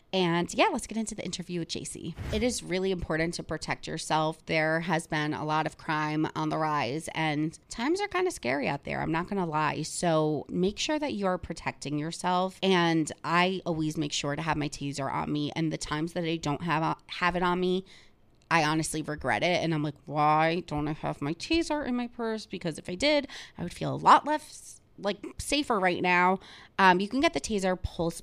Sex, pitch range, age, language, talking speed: female, 155-195 Hz, 20-39, English, 225 wpm